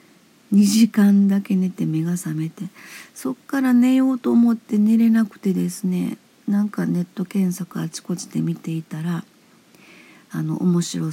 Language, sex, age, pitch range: Japanese, female, 50-69, 170-230 Hz